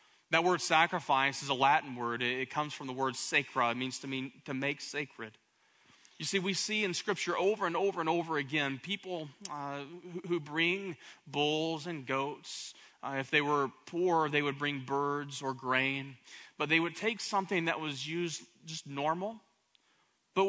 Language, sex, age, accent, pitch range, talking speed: English, male, 30-49, American, 160-210 Hz, 180 wpm